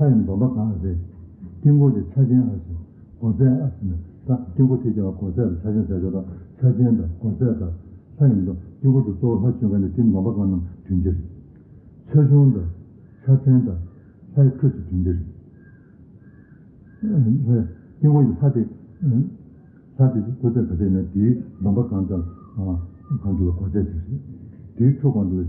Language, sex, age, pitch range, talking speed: Italian, male, 60-79, 95-125 Hz, 65 wpm